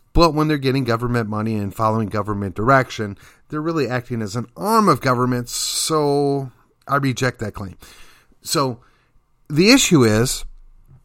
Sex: male